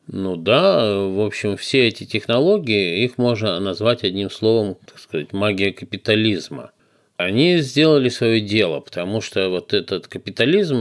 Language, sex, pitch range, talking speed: Russian, male, 95-130 Hz, 140 wpm